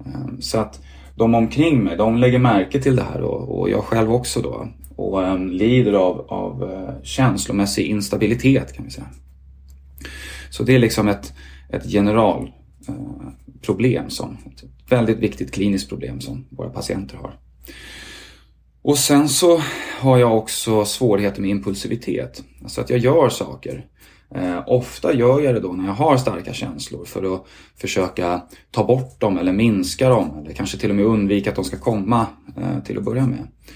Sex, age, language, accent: male, 30-49, Swedish, native